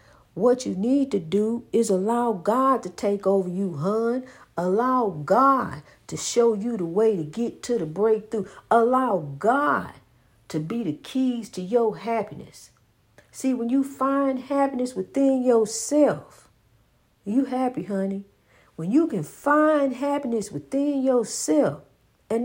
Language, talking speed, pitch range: English, 140 wpm, 205-275 Hz